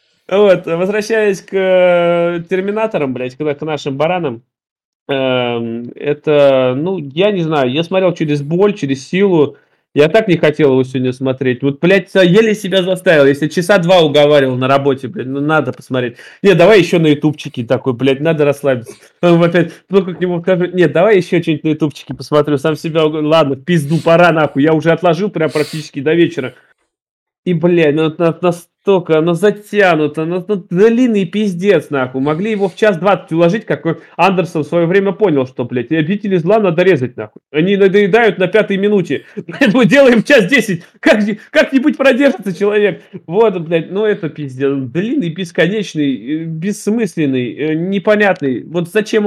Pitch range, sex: 145-195 Hz, male